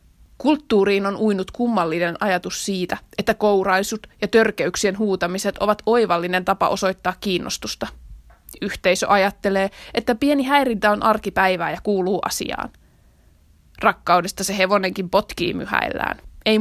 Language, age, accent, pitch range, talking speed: Finnish, 20-39, native, 185-215 Hz, 115 wpm